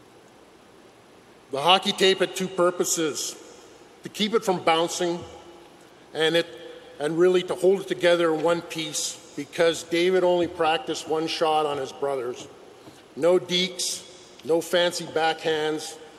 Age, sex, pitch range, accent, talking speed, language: 50-69, male, 170-200 Hz, American, 135 wpm, English